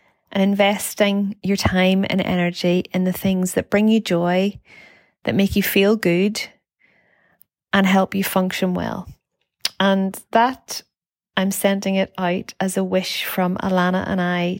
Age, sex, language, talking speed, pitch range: 20-39, female, English, 150 wpm, 180-210 Hz